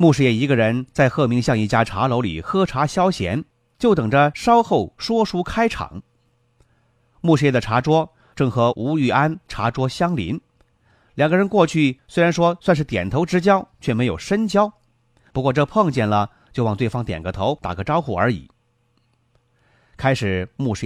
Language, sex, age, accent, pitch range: Chinese, male, 30-49, native, 120-160 Hz